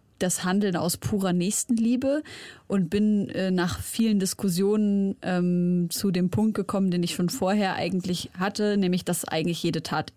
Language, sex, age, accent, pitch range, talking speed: German, female, 30-49, German, 180-230 Hz, 160 wpm